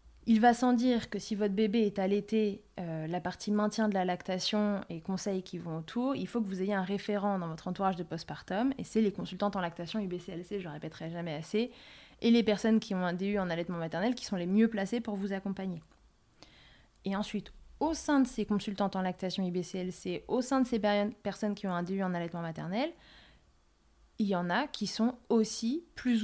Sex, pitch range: female, 185-225 Hz